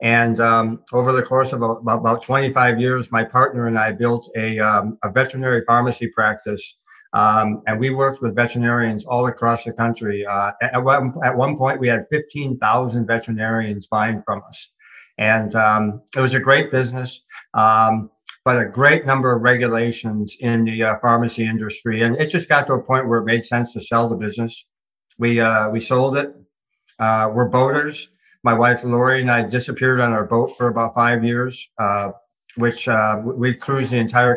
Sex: male